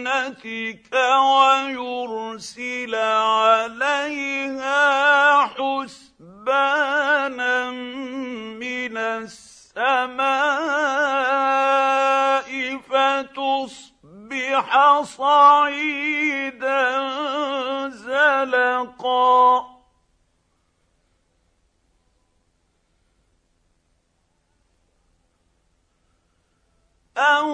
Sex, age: male, 50-69